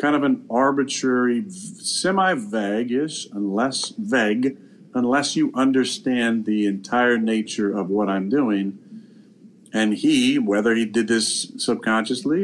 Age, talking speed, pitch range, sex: 40-59, 120 wpm, 105-130 Hz, male